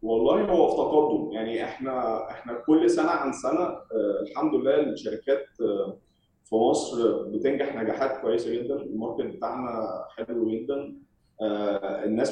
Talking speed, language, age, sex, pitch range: 130 wpm, Arabic, 20-39, male, 105-165 Hz